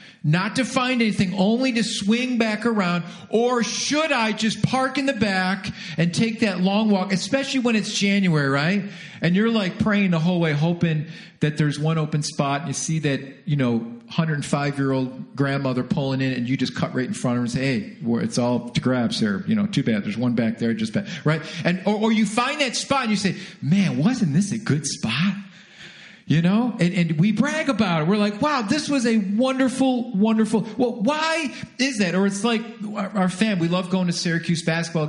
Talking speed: 215 wpm